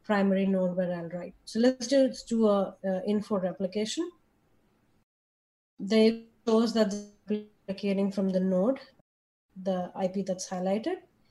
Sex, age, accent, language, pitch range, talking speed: female, 20-39, Indian, English, 185-230 Hz, 135 wpm